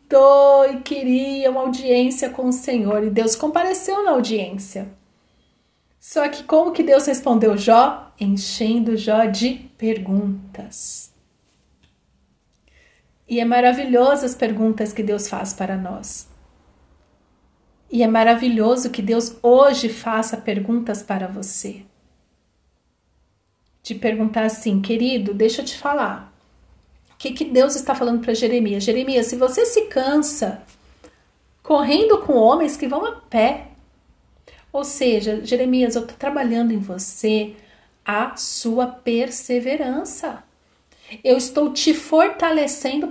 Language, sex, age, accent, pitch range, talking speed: Portuguese, female, 40-59, Brazilian, 215-275 Hz, 120 wpm